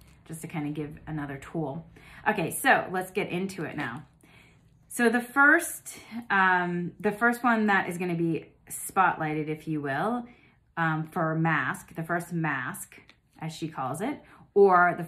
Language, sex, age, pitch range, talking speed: English, female, 30-49, 160-200 Hz, 165 wpm